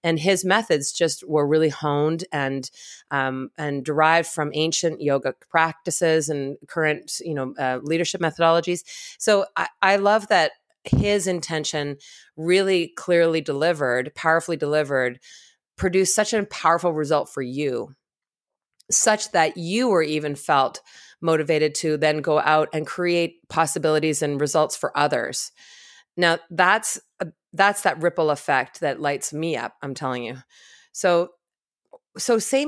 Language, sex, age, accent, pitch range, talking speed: English, female, 30-49, American, 155-190 Hz, 140 wpm